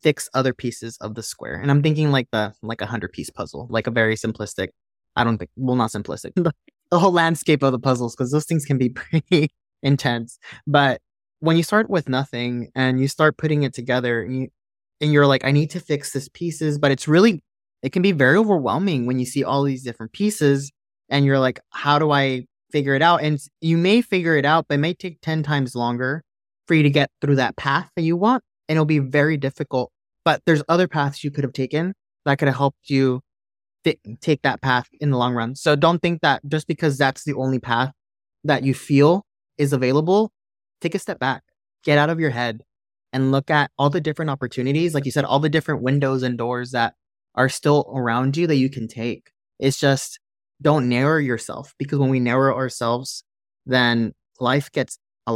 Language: English